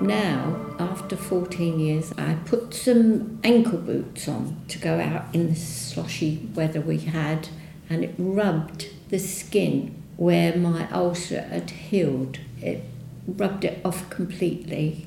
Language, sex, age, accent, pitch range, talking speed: English, female, 60-79, British, 155-185 Hz, 135 wpm